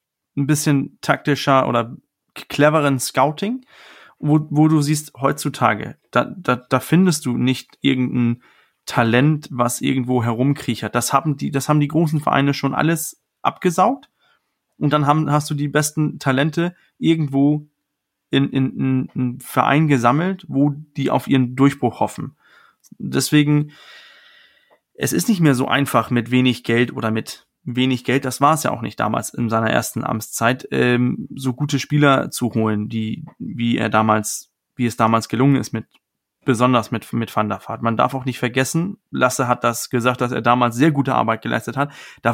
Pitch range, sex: 125-150 Hz, male